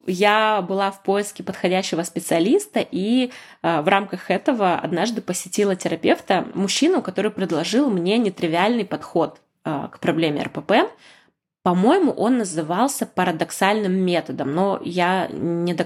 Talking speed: 125 wpm